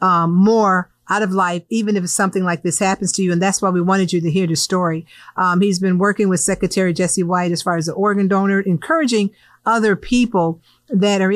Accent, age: American, 50-69